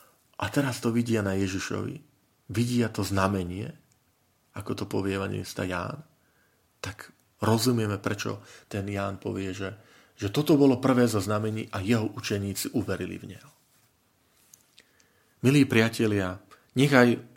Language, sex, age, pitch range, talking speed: Slovak, male, 40-59, 100-125 Hz, 125 wpm